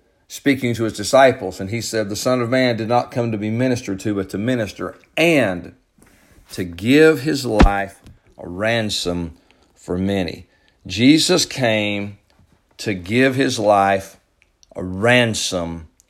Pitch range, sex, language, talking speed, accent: 95-135 Hz, male, English, 140 wpm, American